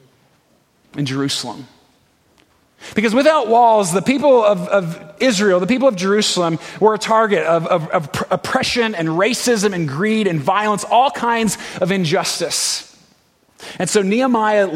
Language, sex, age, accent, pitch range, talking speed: English, male, 30-49, American, 175-230 Hz, 140 wpm